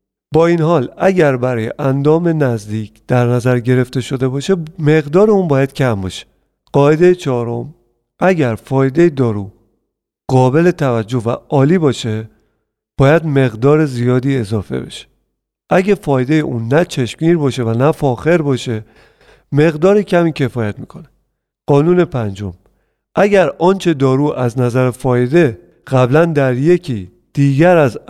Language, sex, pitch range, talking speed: Persian, male, 120-165 Hz, 125 wpm